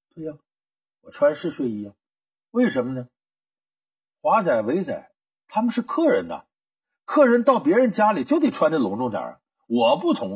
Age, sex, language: 50-69, male, Chinese